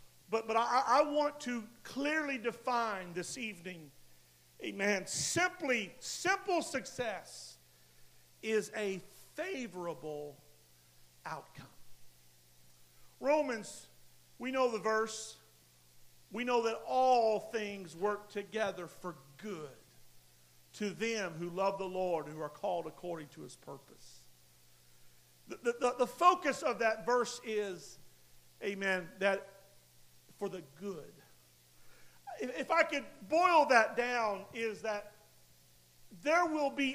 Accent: American